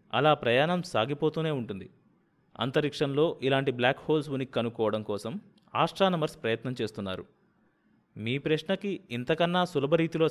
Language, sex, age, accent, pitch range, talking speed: Telugu, male, 20-39, native, 120-170 Hz, 105 wpm